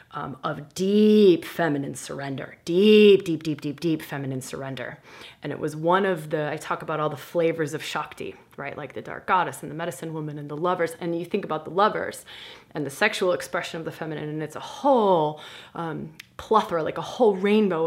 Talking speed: 205 wpm